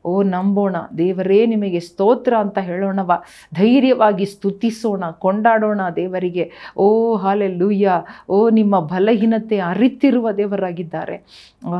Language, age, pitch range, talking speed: Kannada, 40-59, 175-215 Hz, 100 wpm